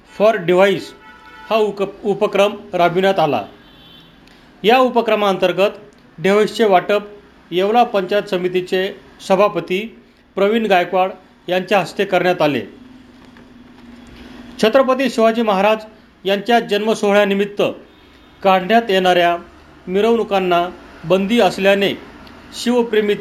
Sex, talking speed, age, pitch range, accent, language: male, 80 wpm, 40-59, 185-220 Hz, native, Marathi